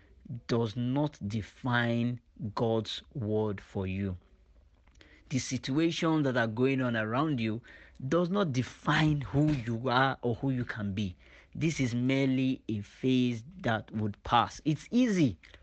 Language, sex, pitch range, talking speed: English, male, 115-145 Hz, 140 wpm